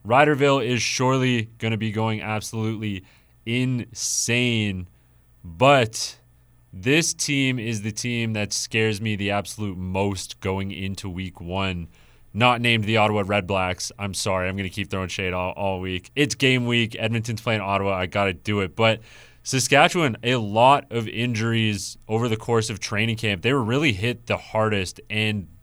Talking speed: 165 wpm